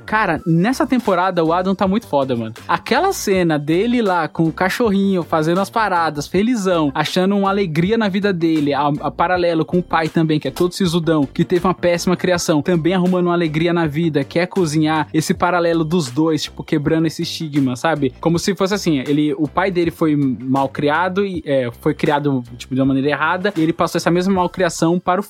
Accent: Brazilian